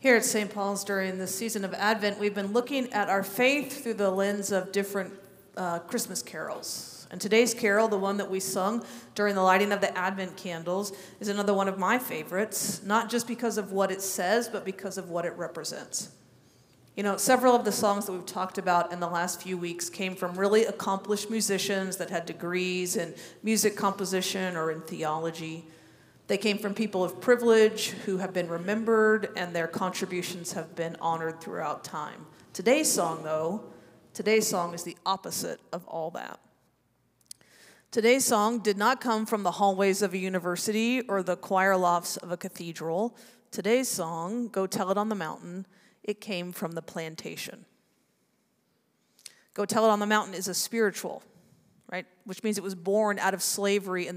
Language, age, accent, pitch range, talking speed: English, 40-59, American, 180-215 Hz, 185 wpm